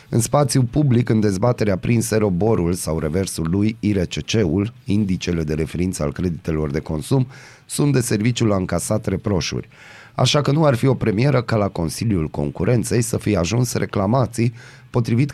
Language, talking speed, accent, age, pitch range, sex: Romanian, 155 wpm, native, 30-49, 90-125 Hz, male